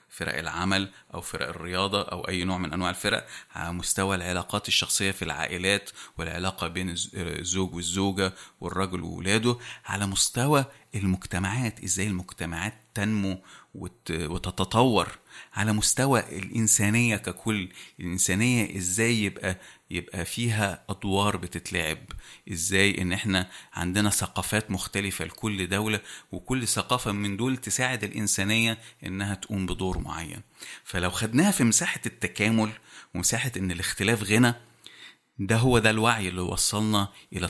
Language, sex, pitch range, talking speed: Arabic, male, 90-110 Hz, 120 wpm